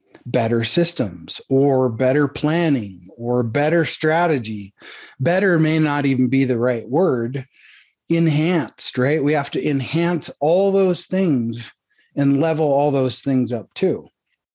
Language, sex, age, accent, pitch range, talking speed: English, male, 30-49, American, 130-165 Hz, 130 wpm